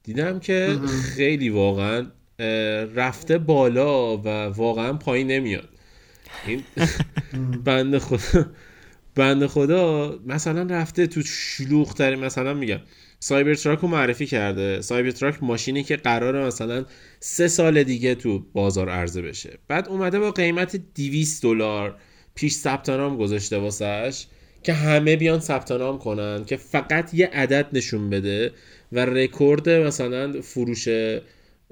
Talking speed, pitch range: 120 wpm, 115-145 Hz